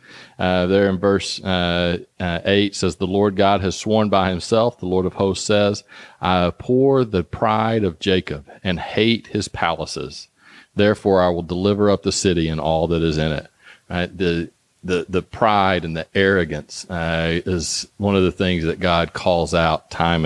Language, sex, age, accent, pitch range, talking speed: English, male, 40-59, American, 85-100 Hz, 185 wpm